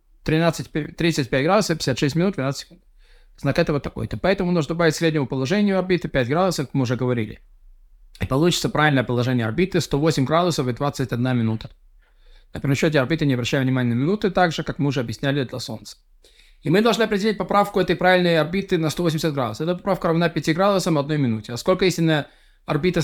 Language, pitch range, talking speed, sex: Russian, 130-170 Hz, 190 wpm, male